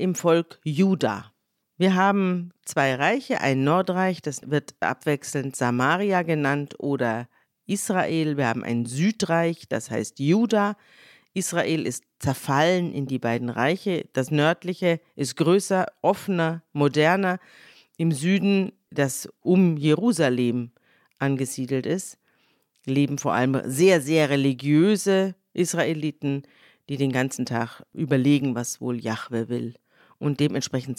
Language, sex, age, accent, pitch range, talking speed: German, female, 50-69, German, 135-185 Hz, 120 wpm